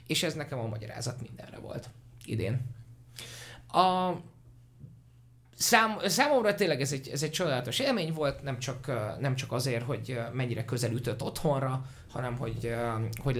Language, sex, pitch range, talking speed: Hungarian, male, 115-140 Hz, 125 wpm